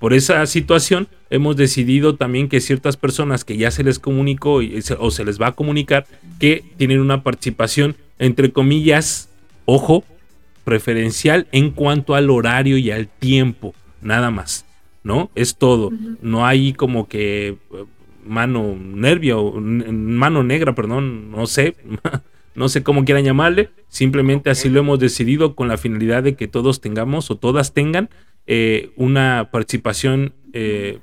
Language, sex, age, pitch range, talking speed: Spanish, male, 30-49, 115-145 Hz, 145 wpm